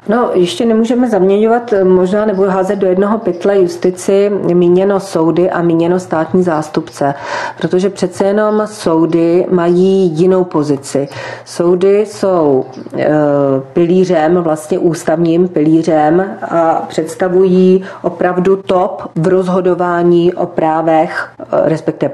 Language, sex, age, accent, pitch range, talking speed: Czech, female, 40-59, native, 165-190 Hz, 105 wpm